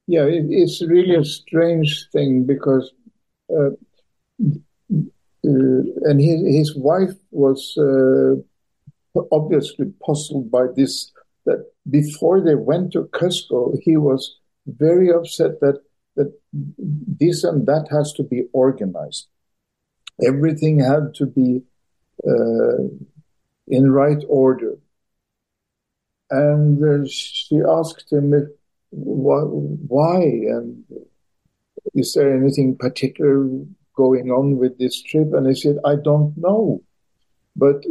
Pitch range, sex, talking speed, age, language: 135-155 Hz, male, 110 wpm, 50-69, English